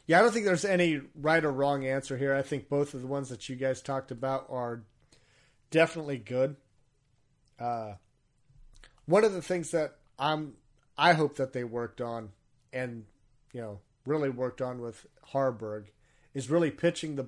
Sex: male